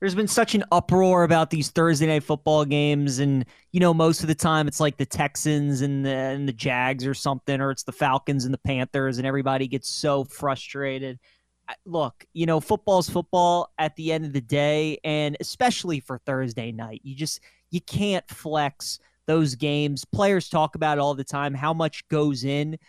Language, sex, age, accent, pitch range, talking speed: English, male, 20-39, American, 145-180 Hz, 195 wpm